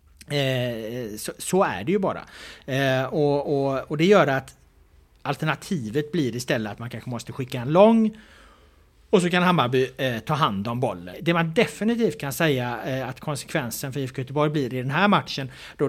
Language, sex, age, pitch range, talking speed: Swedish, male, 30-49, 125-175 Hz, 190 wpm